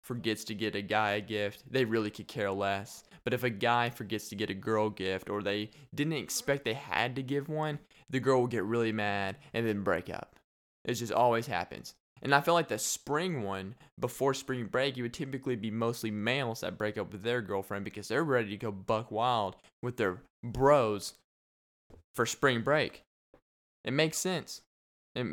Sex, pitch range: male, 105-135 Hz